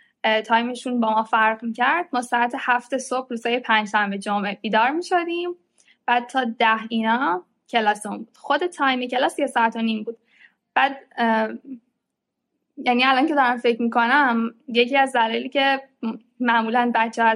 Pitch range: 225-270 Hz